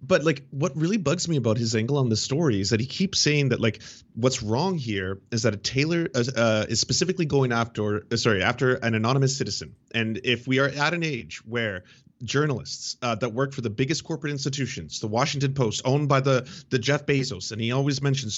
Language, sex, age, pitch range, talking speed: English, male, 30-49, 110-140 Hz, 220 wpm